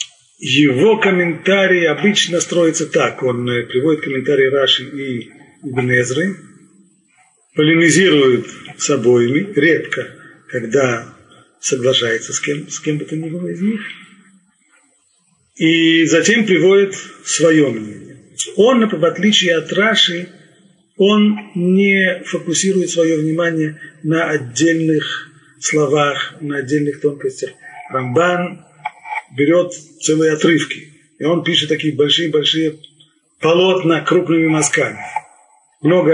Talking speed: 100 wpm